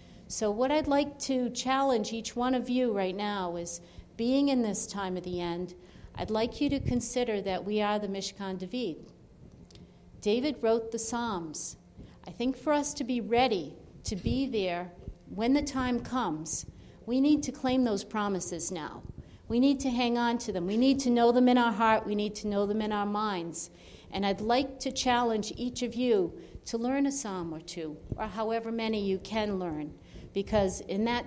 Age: 50-69